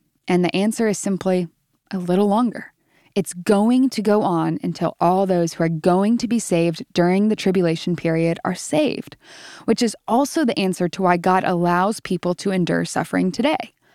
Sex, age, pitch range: female, 10-29, 180-230 Hz